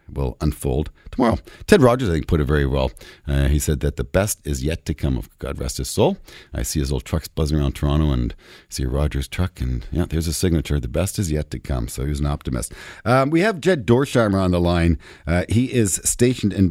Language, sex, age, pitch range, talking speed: English, male, 50-69, 75-95 Hz, 240 wpm